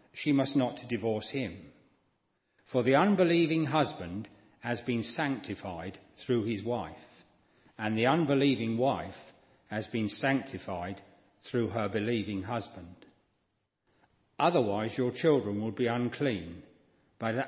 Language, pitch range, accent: English, 105-135 Hz, British